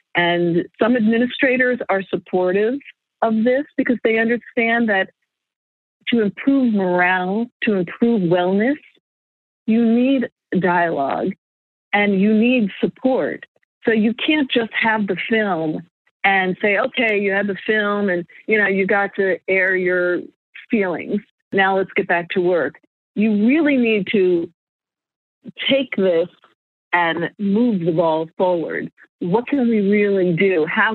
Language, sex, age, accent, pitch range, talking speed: English, female, 50-69, American, 185-230 Hz, 135 wpm